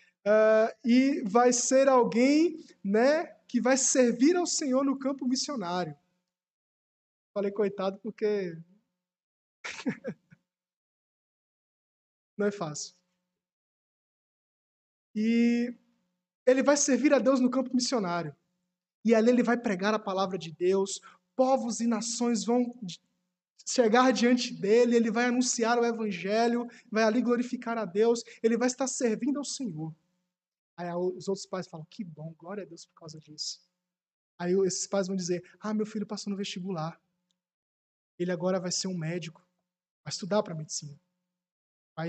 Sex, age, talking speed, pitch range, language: male, 20-39, 135 wpm, 180-240 Hz, Portuguese